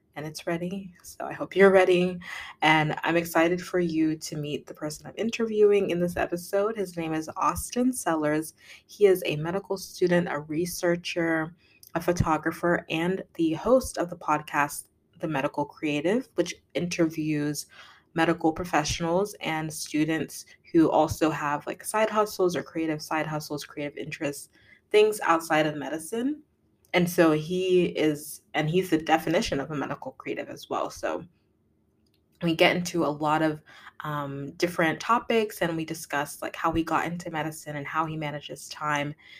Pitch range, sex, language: 150-180 Hz, female, English